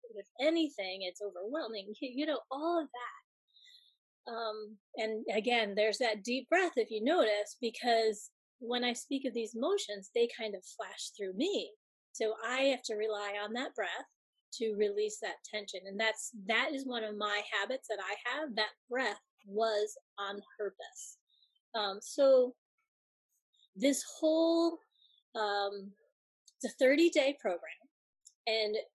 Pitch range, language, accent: 205-270 Hz, English, American